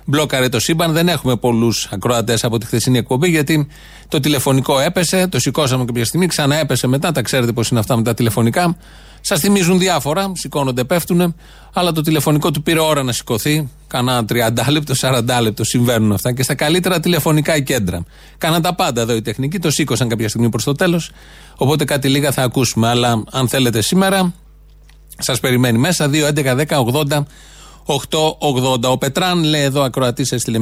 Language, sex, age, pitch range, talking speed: Greek, male, 30-49, 120-155 Hz, 170 wpm